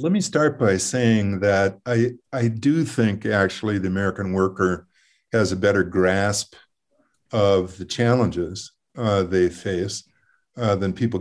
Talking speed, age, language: 145 wpm, 50-69, English